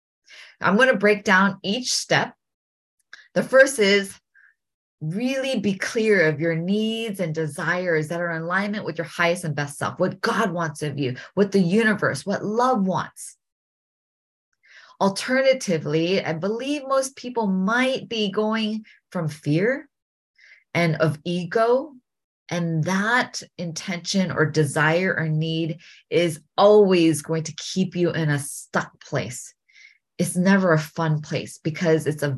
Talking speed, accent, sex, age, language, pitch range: 145 wpm, American, female, 20-39, English, 160-215 Hz